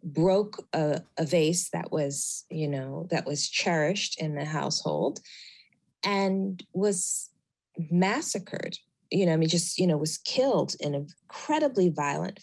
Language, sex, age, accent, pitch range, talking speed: English, female, 30-49, American, 150-180 Hz, 145 wpm